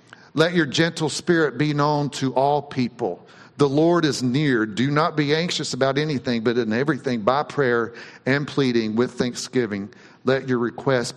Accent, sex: American, male